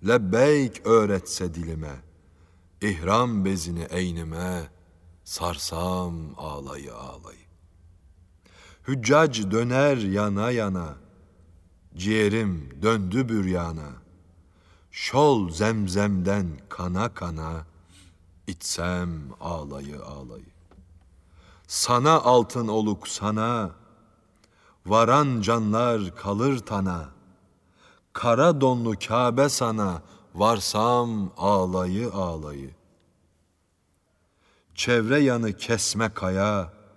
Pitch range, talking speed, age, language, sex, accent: 85-105 Hz, 70 wpm, 60-79, Turkish, male, native